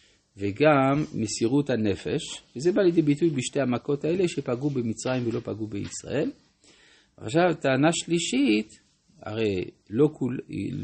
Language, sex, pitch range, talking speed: Hebrew, male, 110-145 Hz, 115 wpm